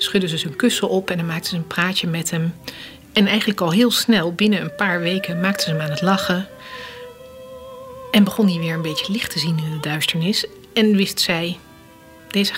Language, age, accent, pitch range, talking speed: Dutch, 40-59, Dutch, 170-210 Hz, 210 wpm